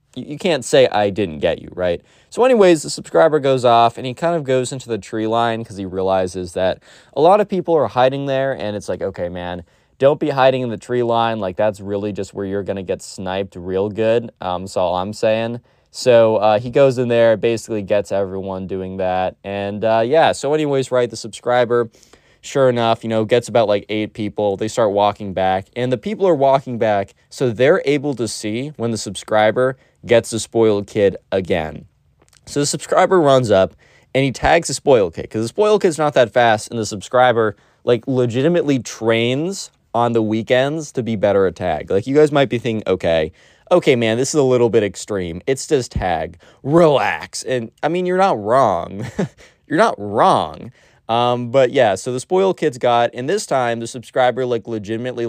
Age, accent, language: 20-39, American, English